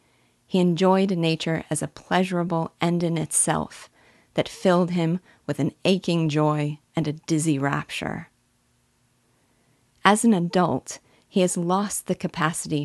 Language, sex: English, female